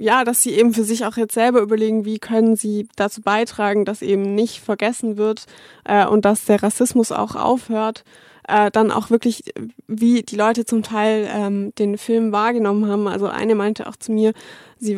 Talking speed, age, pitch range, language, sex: 190 wpm, 20-39, 205-225 Hz, German, female